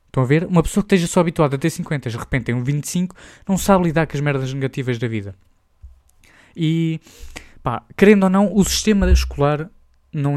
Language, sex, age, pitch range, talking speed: Portuguese, male, 20-39, 120-170 Hz, 205 wpm